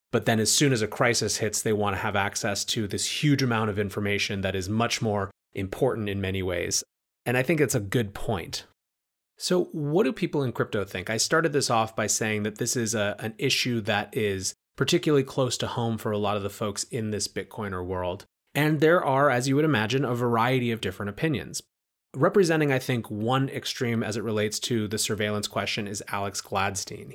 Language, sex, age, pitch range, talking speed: English, male, 30-49, 100-125 Hz, 215 wpm